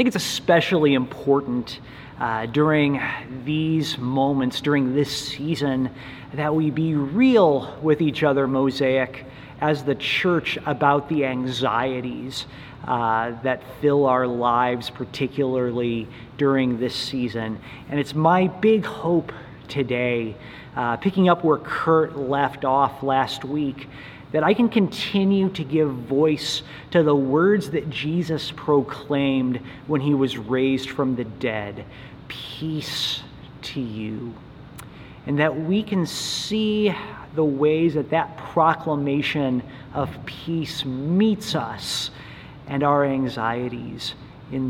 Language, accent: English, American